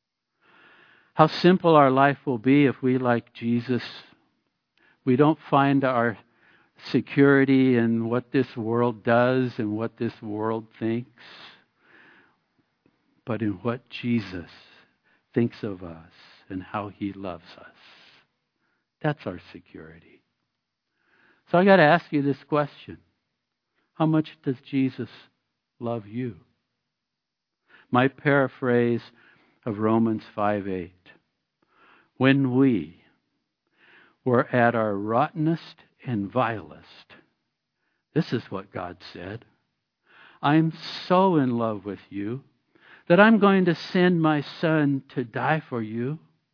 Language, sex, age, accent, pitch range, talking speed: English, male, 60-79, American, 115-145 Hz, 115 wpm